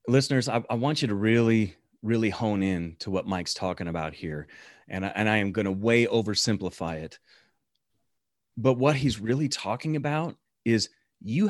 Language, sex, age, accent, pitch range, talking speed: English, male, 30-49, American, 110-150 Hz, 170 wpm